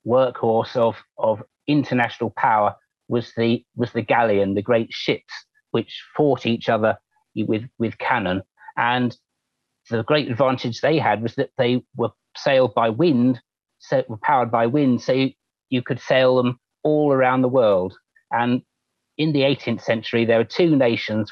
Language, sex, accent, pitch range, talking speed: English, male, British, 115-135 Hz, 160 wpm